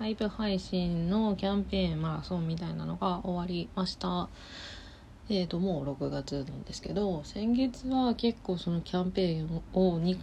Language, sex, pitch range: Japanese, female, 145-200 Hz